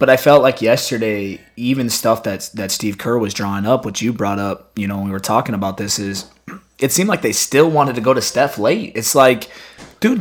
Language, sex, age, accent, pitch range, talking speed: English, male, 30-49, American, 120-165 Hz, 240 wpm